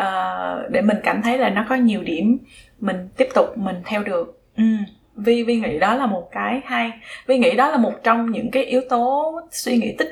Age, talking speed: 20-39, 215 wpm